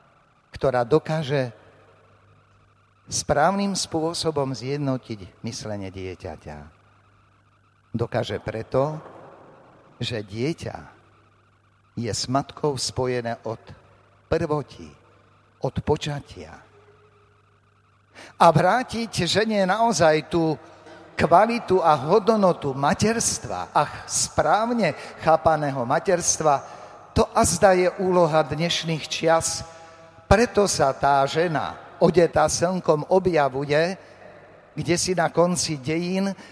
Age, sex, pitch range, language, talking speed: 60-79, male, 105-165 Hz, Slovak, 80 wpm